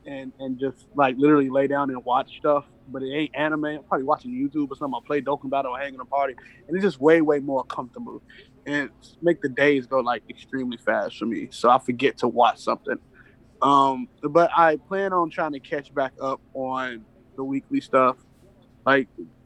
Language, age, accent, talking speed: English, 20-39, American, 205 wpm